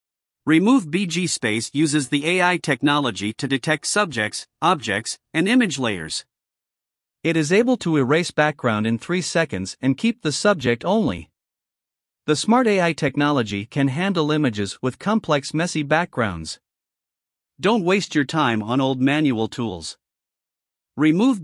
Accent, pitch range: American, 135-175 Hz